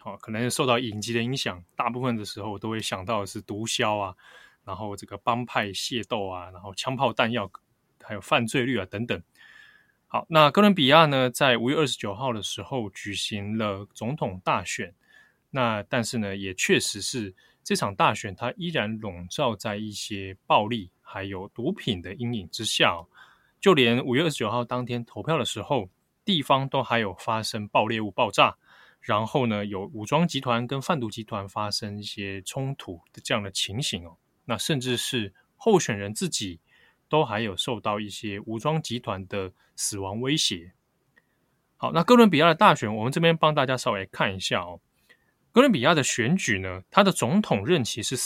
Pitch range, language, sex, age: 100-135 Hz, Chinese, male, 20-39